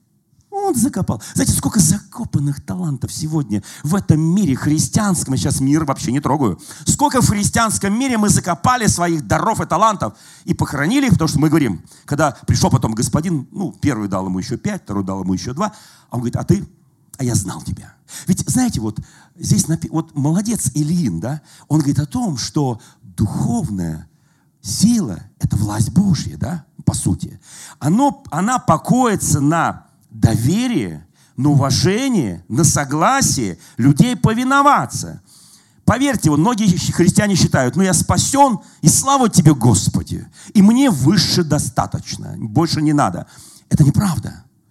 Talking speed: 150 wpm